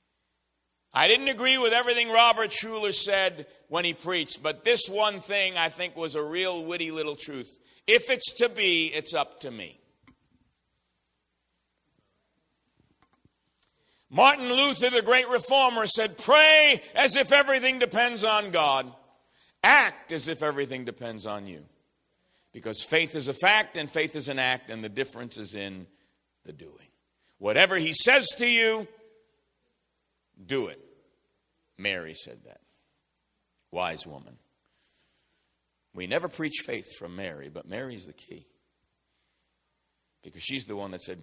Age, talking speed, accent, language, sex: 50-69, 140 wpm, American, English, male